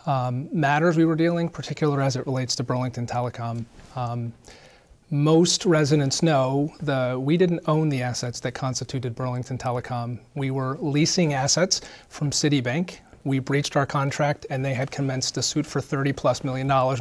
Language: English